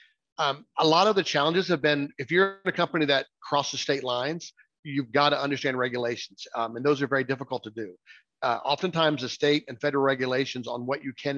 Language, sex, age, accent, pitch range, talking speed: English, male, 40-59, American, 130-160 Hz, 215 wpm